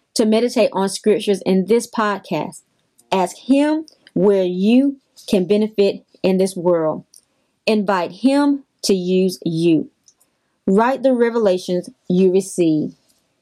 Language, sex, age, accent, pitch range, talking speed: English, female, 30-49, American, 180-240 Hz, 115 wpm